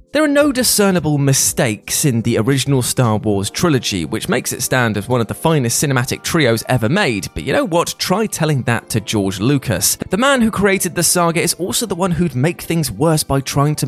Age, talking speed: 20-39, 220 wpm